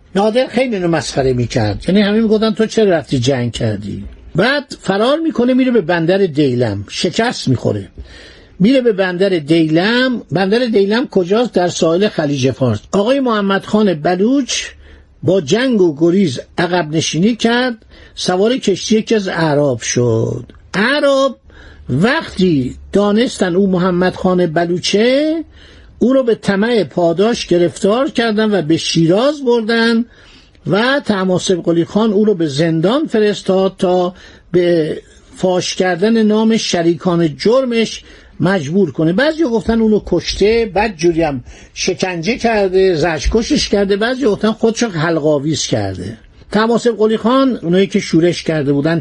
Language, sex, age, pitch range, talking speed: Persian, male, 60-79, 170-225 Hz, 130 wpm